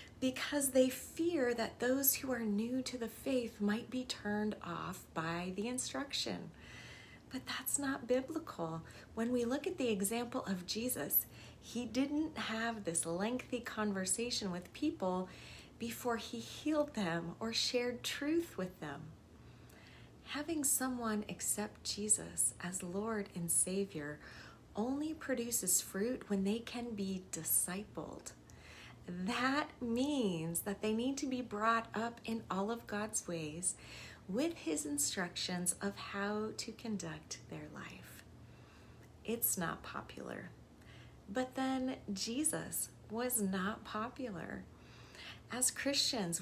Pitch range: 185-250 Hz